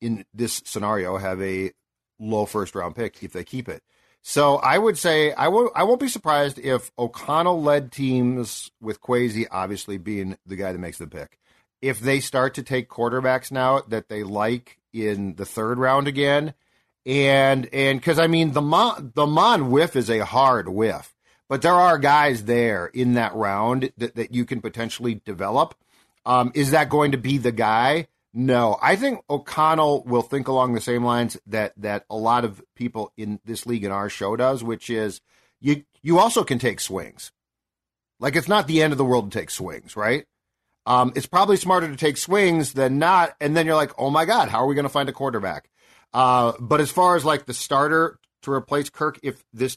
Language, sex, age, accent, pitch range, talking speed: English, male, 40-59, American, 115-145 Hz, 205 wpm